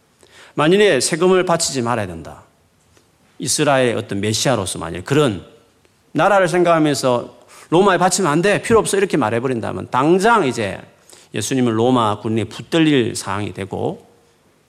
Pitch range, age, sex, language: 115-170 Hz, 40-59, male, Korean